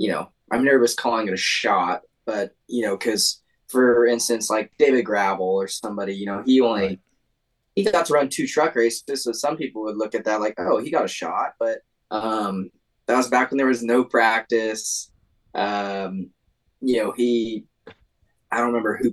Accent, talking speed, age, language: American, 190 wpm, 10-29, English